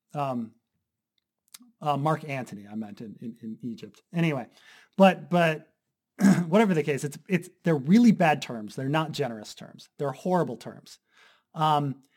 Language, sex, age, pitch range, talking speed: English, male, 30-49, 140-185 Hz, 150 wpm